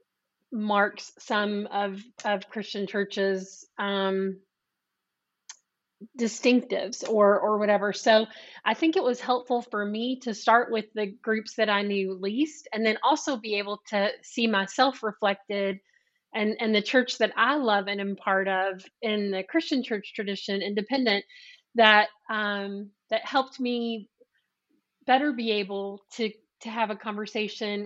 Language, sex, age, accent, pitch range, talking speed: English, female, 30-49, American, 205-250 Hz, 145 wpm